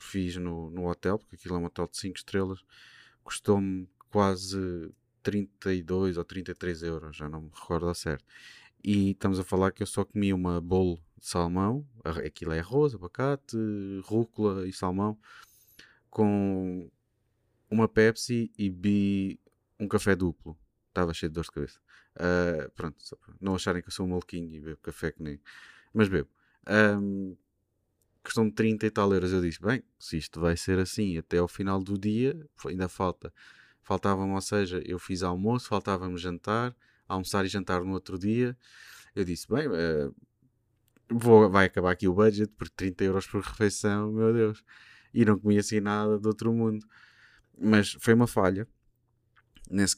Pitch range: 90-110 Hz